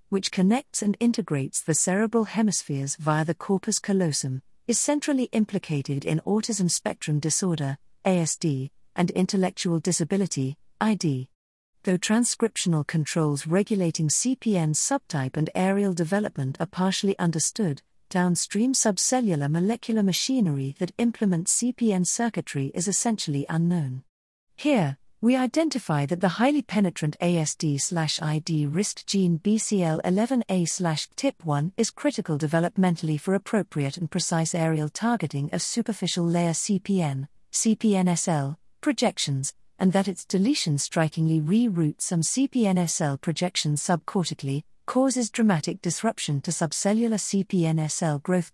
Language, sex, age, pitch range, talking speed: English, female, 50-69, 155-210 Hz, 110 wpm